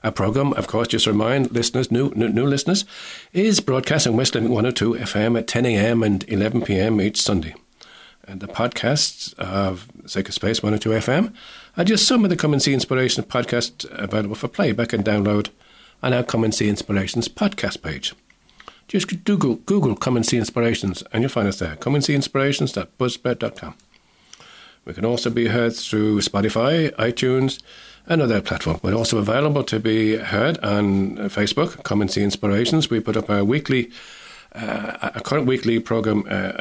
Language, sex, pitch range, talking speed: English, male, 105-135 Hz, 180 wpm